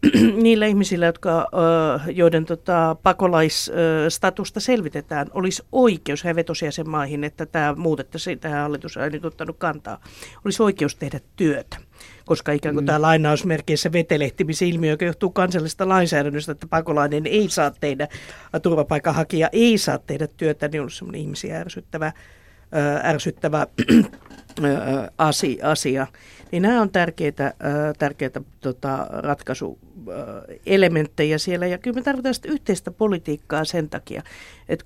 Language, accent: Finnish, native